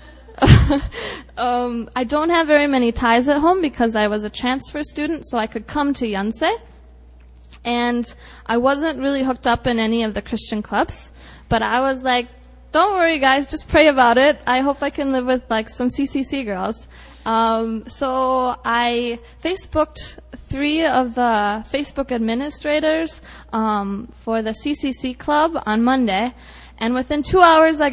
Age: 10-29